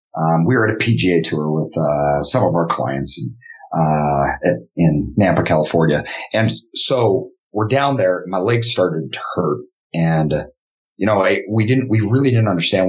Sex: male